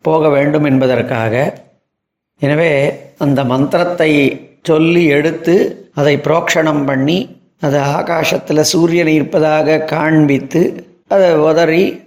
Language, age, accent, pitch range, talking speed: Tamil, 40-59, native, 145-170 Hz, 85 wpm